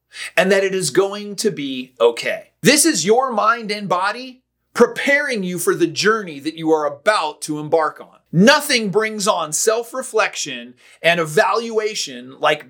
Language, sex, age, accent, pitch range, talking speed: English, male, 30-49, American, 170-245 Hz, 155 wpm